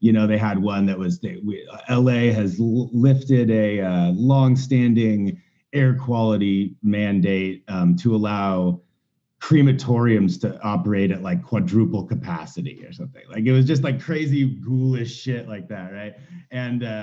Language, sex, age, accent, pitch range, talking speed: English, male, 30-49, American, 105-140 Hz, 145 wpm